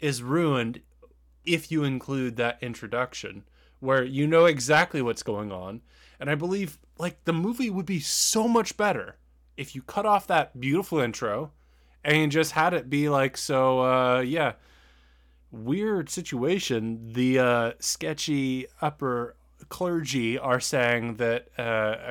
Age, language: 20-39, English